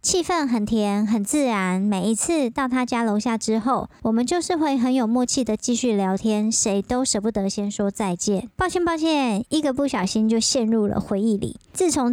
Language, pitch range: Chinese, 205-270 Hz